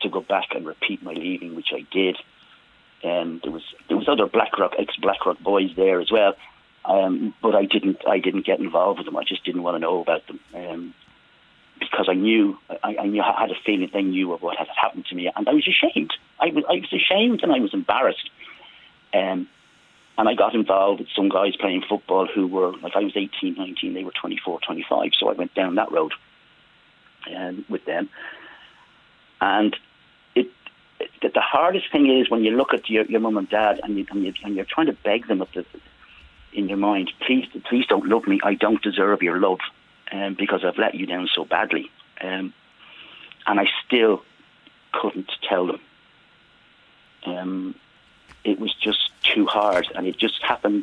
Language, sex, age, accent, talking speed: English, male, 40-59, British, 195 wpm